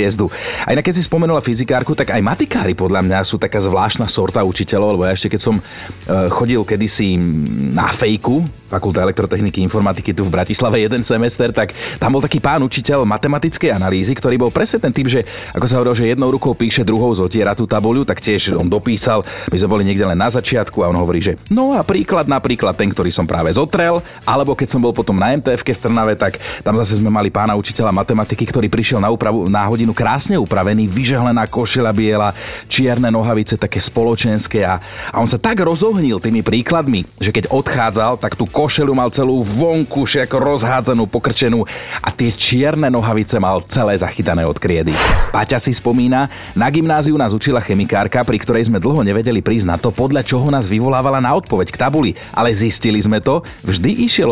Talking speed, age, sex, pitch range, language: 190 wpm, 30-49, male, 105-130 Hz, Slovak